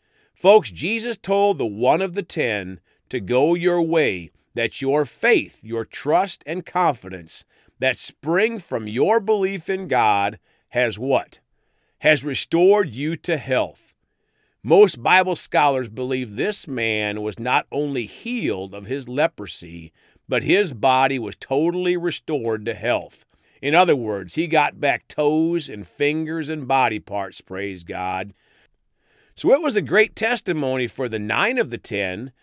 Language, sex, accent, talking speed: English, male, American, 150 wpm